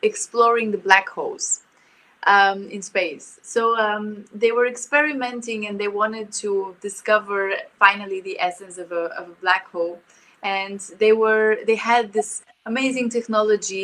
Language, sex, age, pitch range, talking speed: English, female, 20-39, 195-235 Hz, 145 wpm